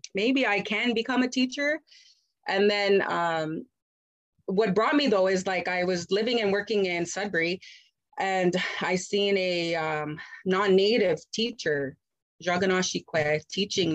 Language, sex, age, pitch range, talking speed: English, female, 30-49, 185-250 Hz, 140 wpm